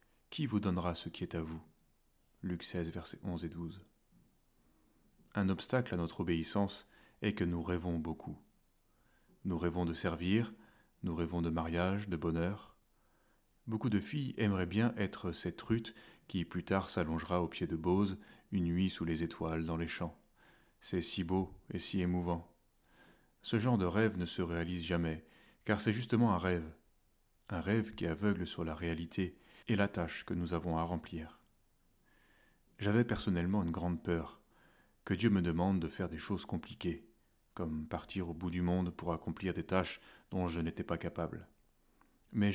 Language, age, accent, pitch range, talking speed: French, 30-49, French, 85-100 Hz, 170 wpm